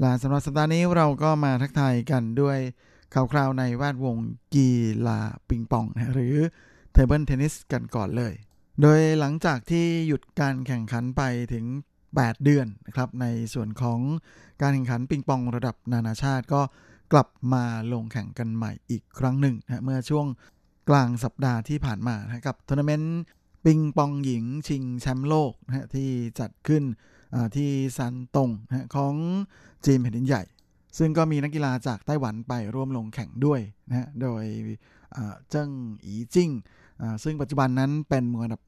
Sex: male